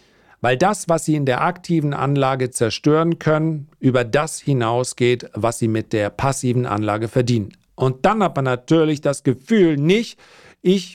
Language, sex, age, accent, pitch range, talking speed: German, male, 50-69, German, 125-160 Hz, 160 wpm